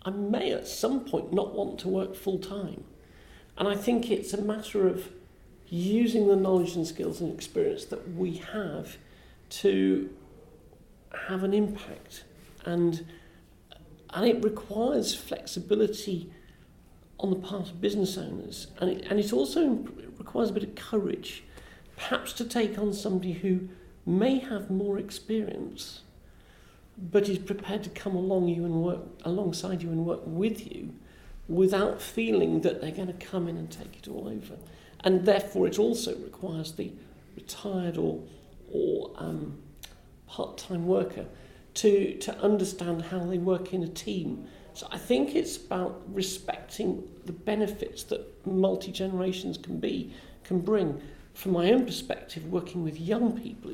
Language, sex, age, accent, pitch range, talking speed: English, male, 50-69, British, 180-210 Hz, 150 wpm